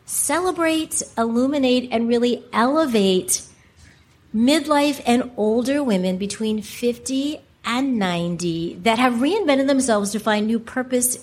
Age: 40-59